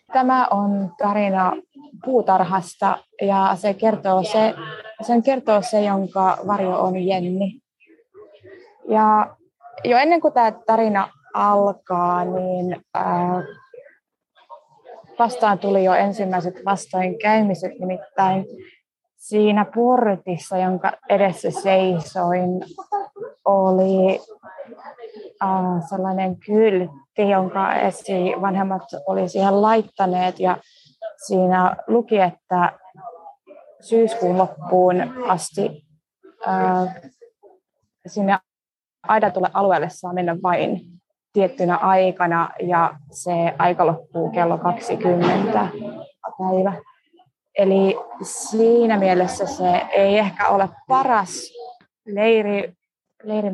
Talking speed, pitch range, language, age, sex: 80 wpm, 185-225 Hz, Finnish, 20-39, female